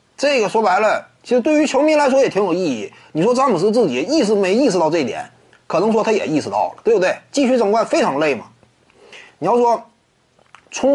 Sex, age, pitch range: male, 30-49, 190-285 Hz